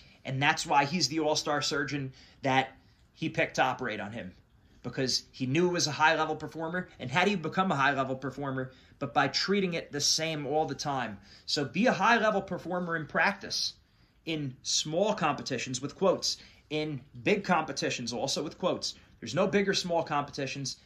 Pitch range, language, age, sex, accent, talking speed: 135-175 Hz, English, 30-49, male, American, 195 wpm